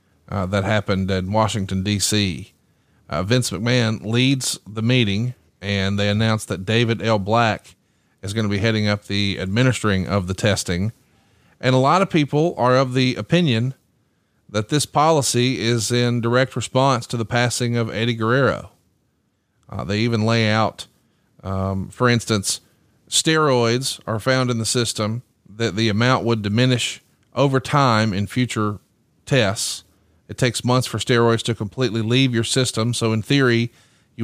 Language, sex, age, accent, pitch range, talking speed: English, male, 40-59, American, 105-130 Hz, 160 wpm